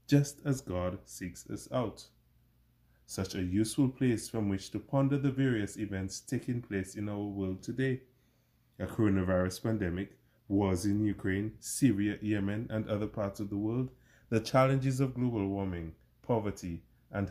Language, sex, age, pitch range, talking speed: English, male, 20-39, 95-120 Hz, 155 wpm